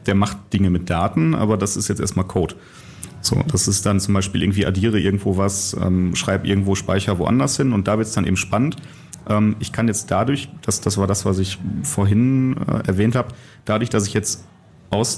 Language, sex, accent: German, male, German